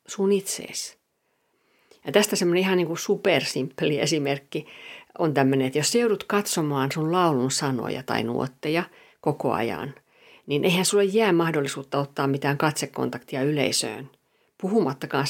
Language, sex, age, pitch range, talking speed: Finnish, female, 50-69, 140-185 Hz, 110 wpm